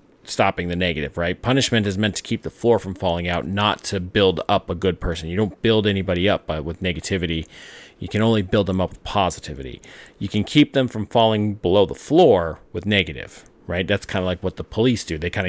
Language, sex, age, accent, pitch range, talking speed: English, male, 30-49, American, 95-125 Hz, 225 wpm